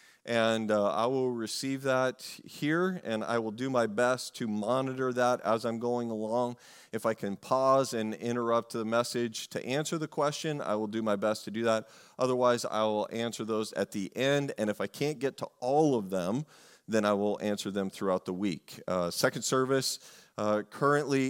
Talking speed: 195 wpm